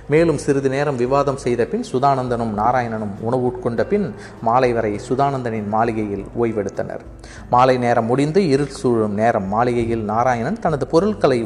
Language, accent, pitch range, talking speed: Tamil, native, 110-140 Hz, 120 wpm